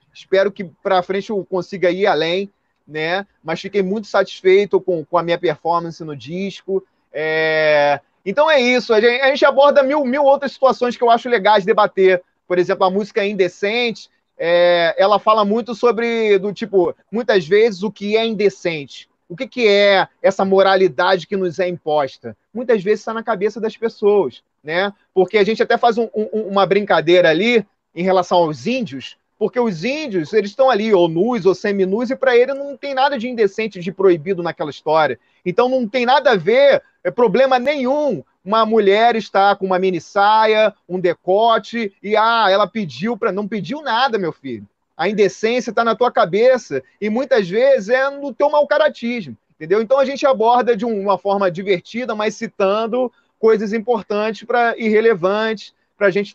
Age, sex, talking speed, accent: 30-49, male, 170 wpm, Brazilian